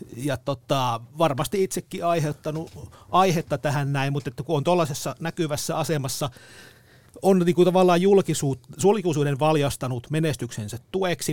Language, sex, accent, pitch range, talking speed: Finnish, male, native, 125-170 Hz, 115 wpm